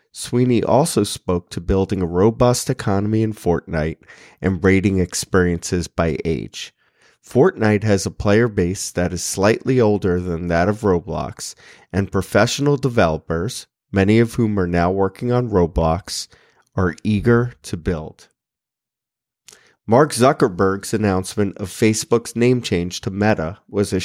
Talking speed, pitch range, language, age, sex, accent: 135 wpm, 90-115 Hz, English, 30-49, male, American